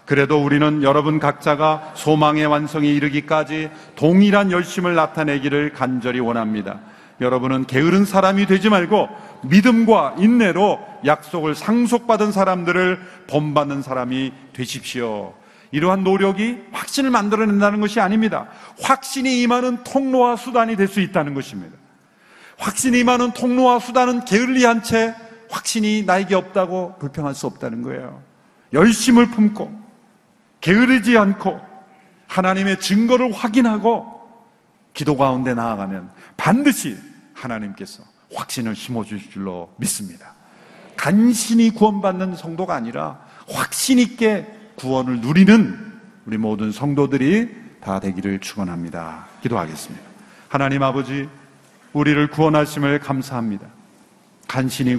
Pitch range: 140-215 Hz